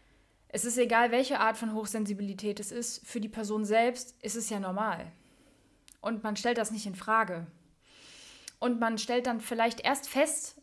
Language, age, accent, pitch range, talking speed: German, 20-39, German, 205-245 Hz, 175 wpm